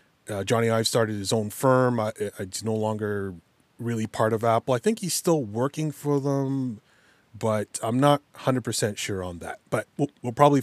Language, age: English, 30-49